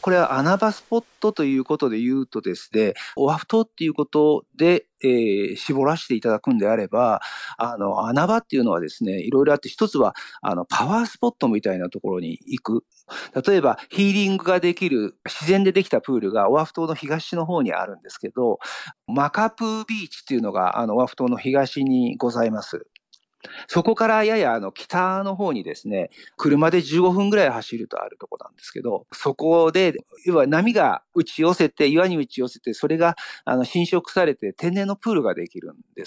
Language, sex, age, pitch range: Japanese, male, 50-69, 140-200 Hz